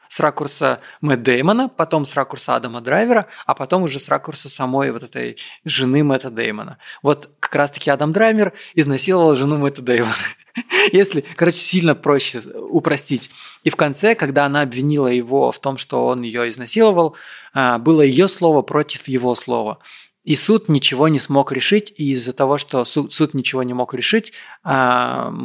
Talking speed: 160 wpm